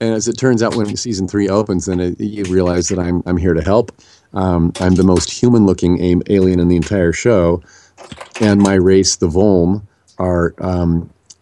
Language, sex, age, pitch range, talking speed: English, male, 40-59, 85-100 Hz, 190 wpm